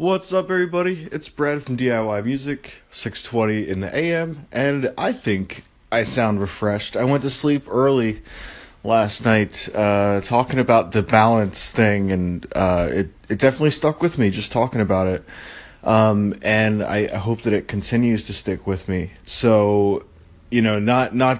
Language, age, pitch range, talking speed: English, 20-39, 100-125 Hz, 170 wpm